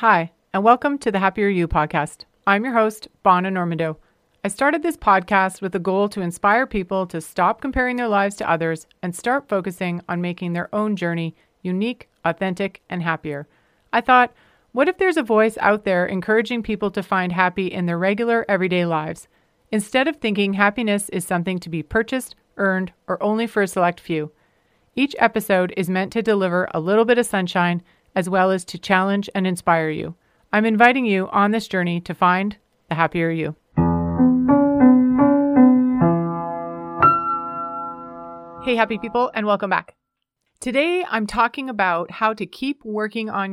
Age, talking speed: 40-59, 170 wpm